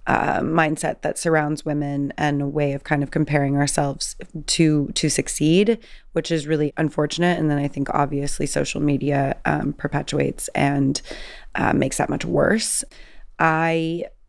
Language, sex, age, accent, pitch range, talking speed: English, female, 30-49, American, 145-165 Hz, 150 wpm